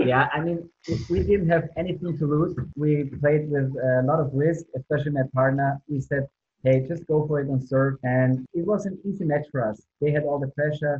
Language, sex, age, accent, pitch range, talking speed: English, male, 20-39, German, 130-155 Hz, 230 wpm